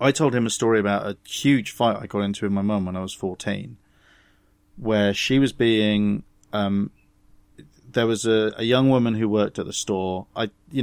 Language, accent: English, British